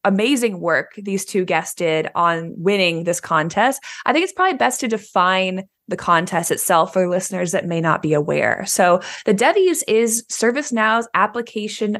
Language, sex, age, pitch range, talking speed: English, female, 20-39, 175-230 Hz, 165 wpm